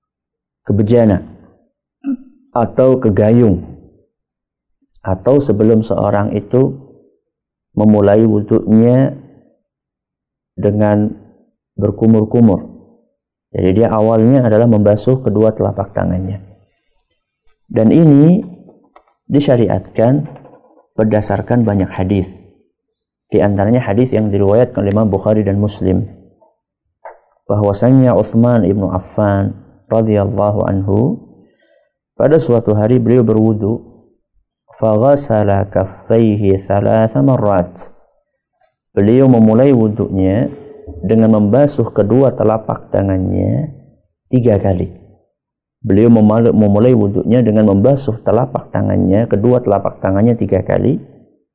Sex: male